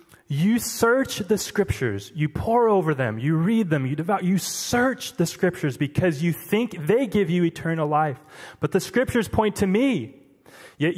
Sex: male